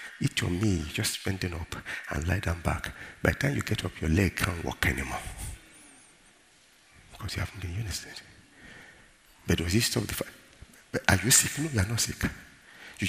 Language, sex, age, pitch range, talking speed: English, male, 50-69, 85-120 Hz, 170 wpm